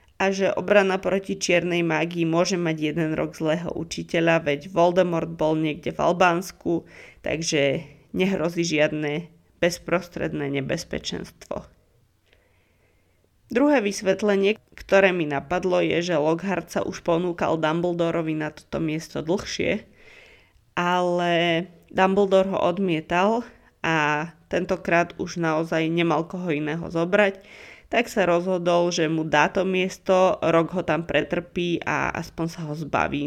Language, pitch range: Slovak, 160-190 Hz